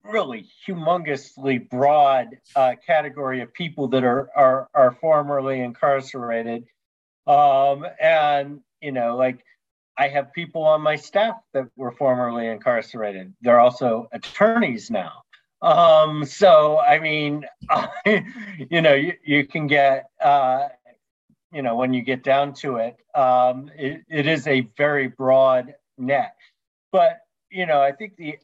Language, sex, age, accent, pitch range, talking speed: English, male, 40-59, American, 135-175 Hz, 135 wpm